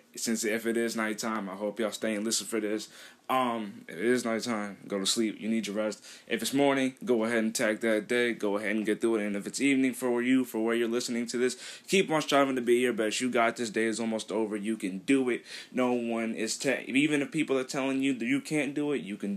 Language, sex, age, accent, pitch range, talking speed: English, male, 20-39, American, 110-140 Hz, 270 wpm